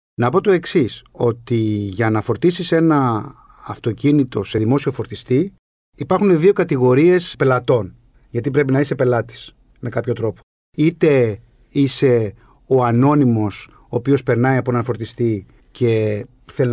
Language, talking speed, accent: Greek, 135 wpm, native